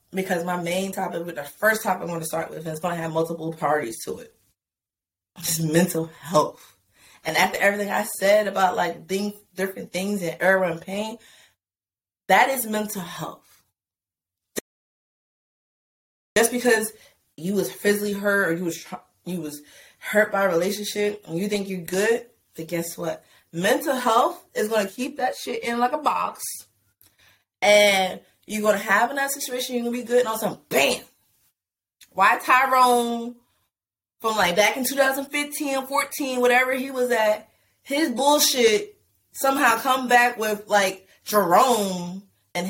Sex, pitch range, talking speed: female, 170-245 Hz, 160 wpm